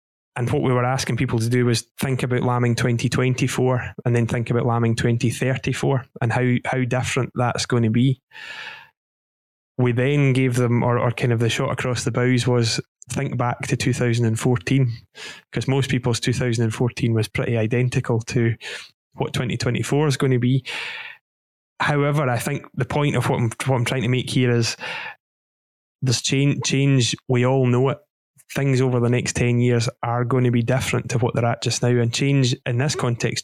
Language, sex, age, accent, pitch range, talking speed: English, male, 20-39, British, 120-135 Hz, 185 wpm